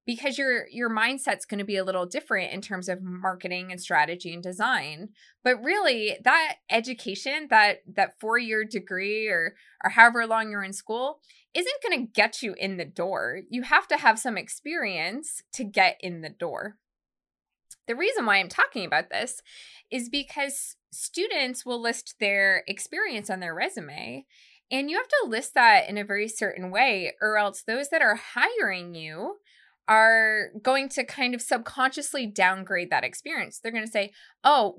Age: 20-39